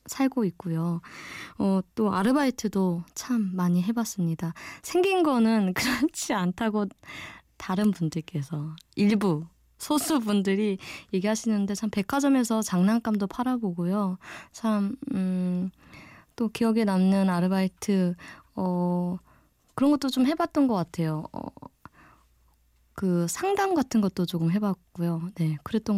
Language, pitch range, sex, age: Korean, 180-235 Hz, female, 20-39